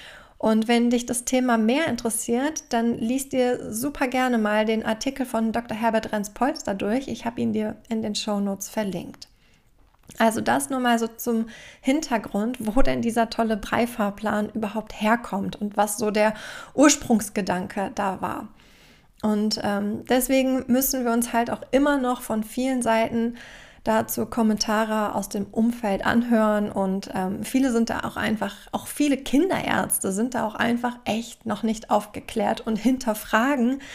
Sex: female